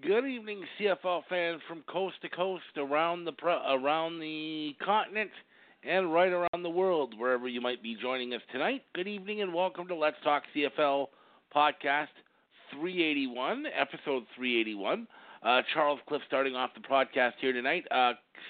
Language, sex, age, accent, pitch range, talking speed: English, male, 50-69, American, 125-185 Hz, 155 wpm